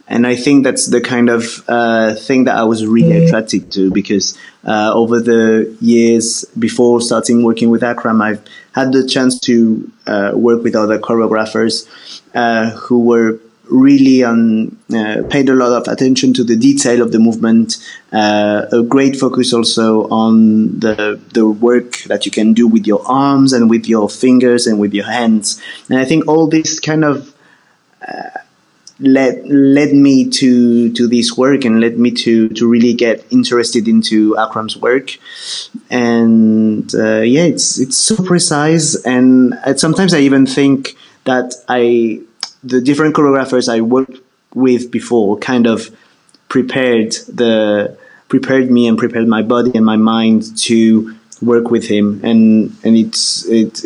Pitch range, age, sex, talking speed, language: 110-130 Hz, 30-49, male, 160 wpm, English